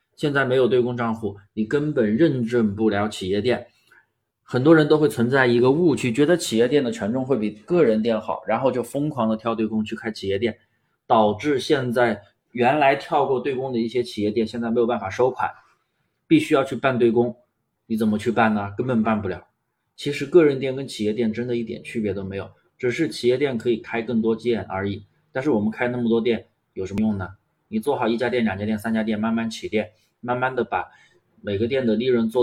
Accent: native